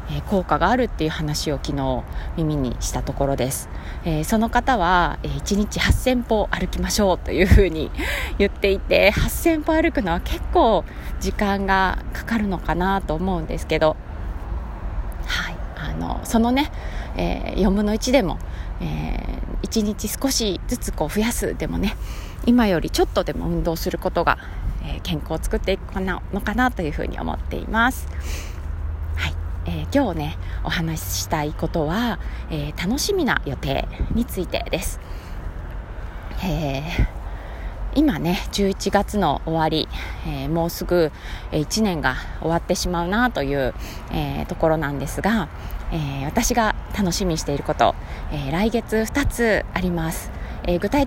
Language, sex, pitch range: Japanese, female, 135-210 Hz